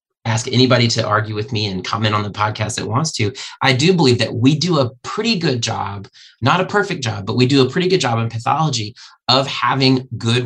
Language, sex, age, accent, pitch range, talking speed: English, male, 30-49, American, 105-125 Hz, 230 wpm